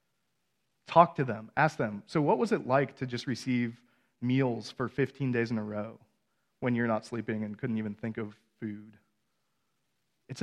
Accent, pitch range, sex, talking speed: American, 115-150 Hz, male, 180 wpm